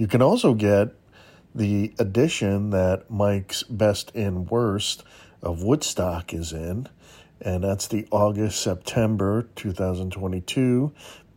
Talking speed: 105 wpm